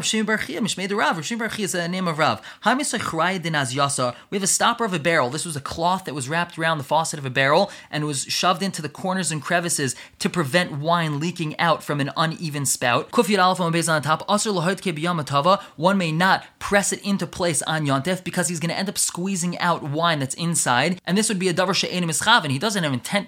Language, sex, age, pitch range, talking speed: English, male, 20-39, 155-195 Hz, 180 wpm